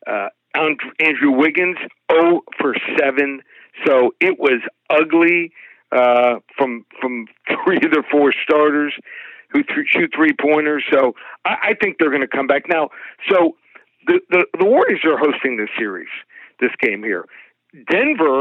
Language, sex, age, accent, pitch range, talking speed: English, male, 60-79, American, 135-175 Hz, 150 wpm